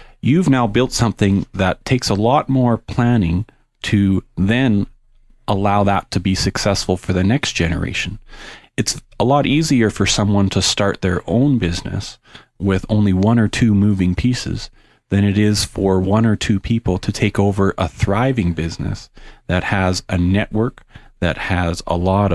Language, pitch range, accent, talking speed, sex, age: English, 95-115 Hz, American, 165 wpm, male, 40-59